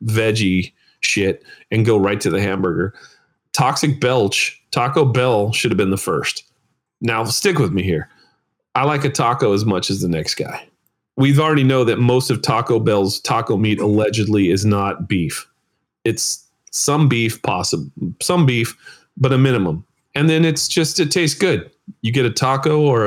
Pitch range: 110-145 Hz